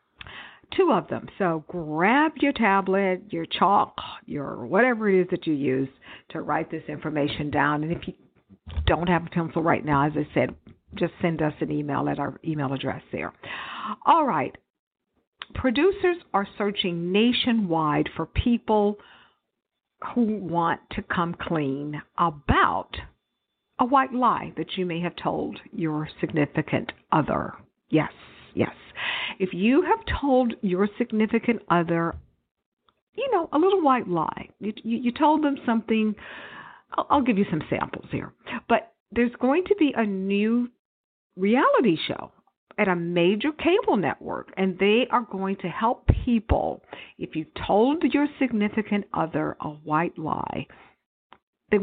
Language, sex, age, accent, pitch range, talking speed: English, female, 50-69, American, 165-245 Hz, 145 wpm